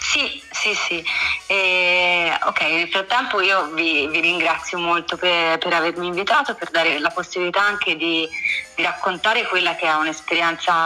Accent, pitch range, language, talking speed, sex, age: native, 165-200 Hz, Italian, 155 wpm, female, 30-49